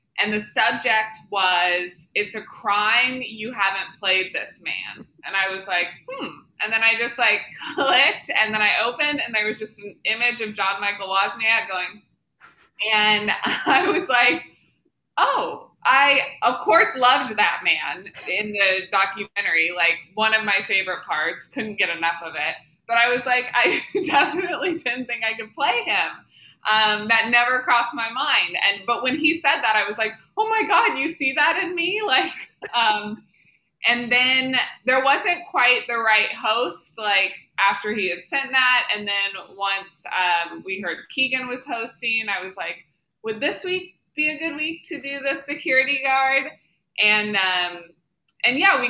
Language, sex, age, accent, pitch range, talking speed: English, female, 20-39, American, 195-260 Hz, 175 wpm